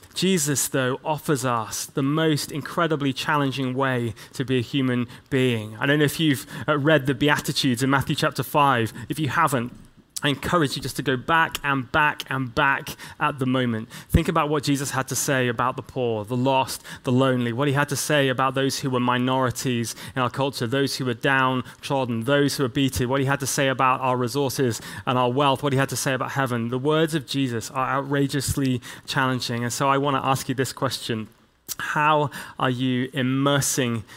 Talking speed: 200 wpm